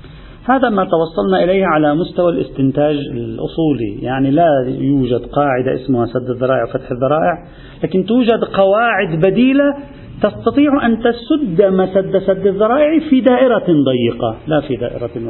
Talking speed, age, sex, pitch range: 135 wpm, 40-59, male, 125-165 Hz